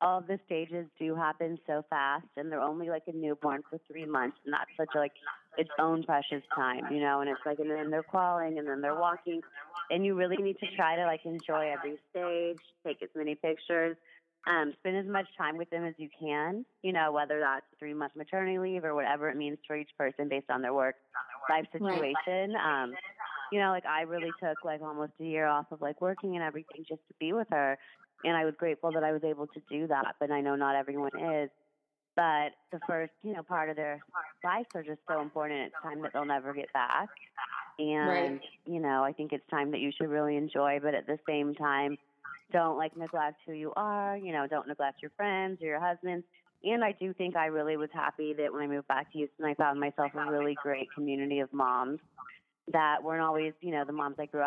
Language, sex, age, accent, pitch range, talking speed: English, female, 20-39, American, 145-170 Hz, 230 wpm